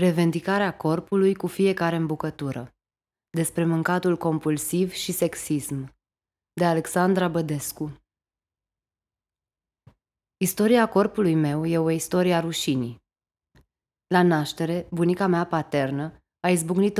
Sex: female